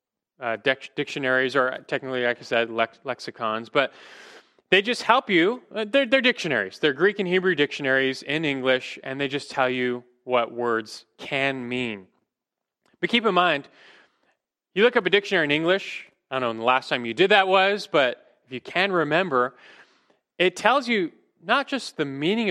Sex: male